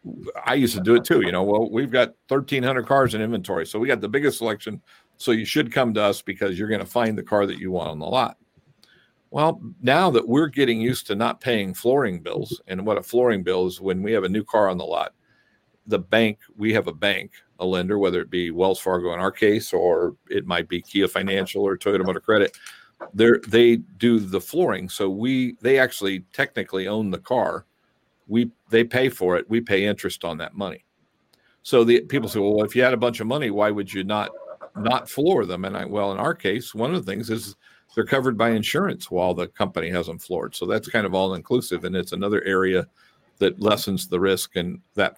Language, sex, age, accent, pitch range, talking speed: English, male, 50-69, American, 95-120 Hz, 225 wpm